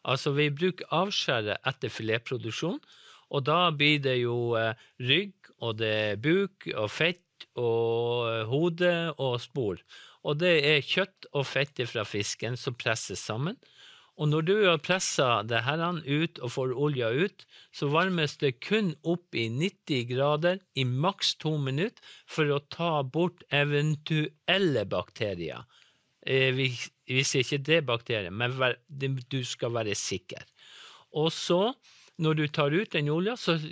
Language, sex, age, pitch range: English, male, 50-69, 120-170 Hz